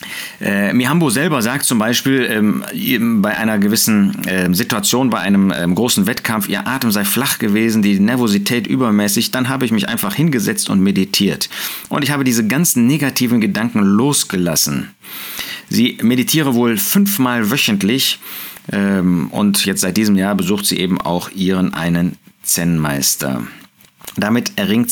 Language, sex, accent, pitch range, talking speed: German, male, German, 95-155 Hz, 135 wpm